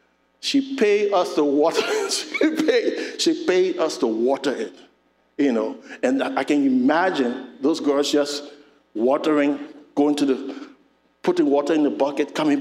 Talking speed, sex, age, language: 150 wpm, male, 60-79, English